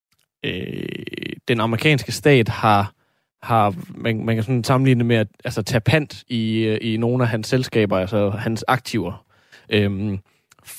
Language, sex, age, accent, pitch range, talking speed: Danish, male, 20-39, native, 105-125 Hz, 145 wpm